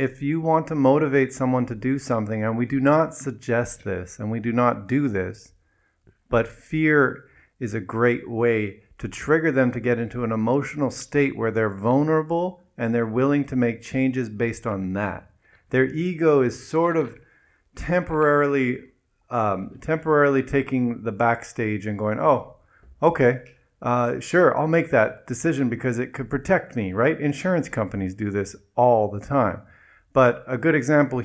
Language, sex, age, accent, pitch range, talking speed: English, male, 40-59, American, 110-140 Hz, 165 wpm